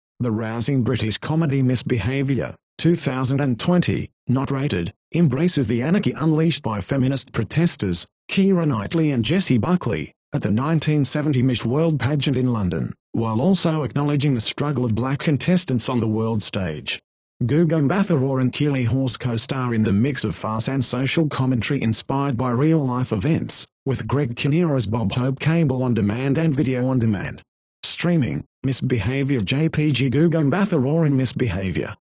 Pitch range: 125-155 Hz